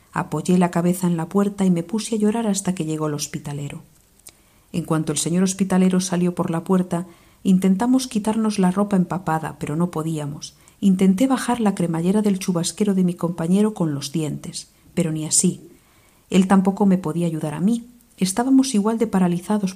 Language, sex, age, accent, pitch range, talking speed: Spanish, female, 50-69, Spanish, 155-195 Hz, 180 wpm